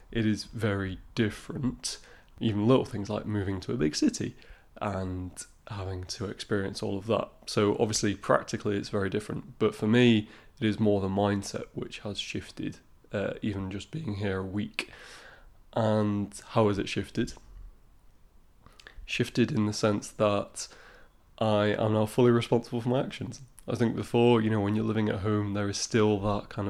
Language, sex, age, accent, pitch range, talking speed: English, male, 20-39, British, 100-115 Hz, 175 wpm